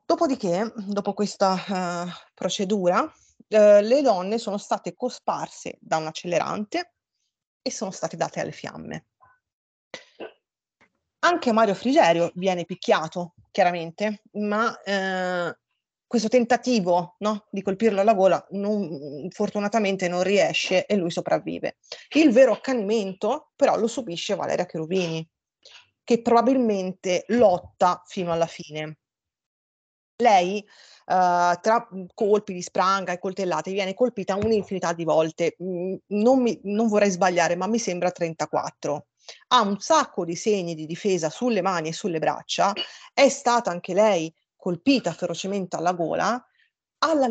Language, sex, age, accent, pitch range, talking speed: Italian, female, 30-49, native, 175-230 Hz, 125 wpm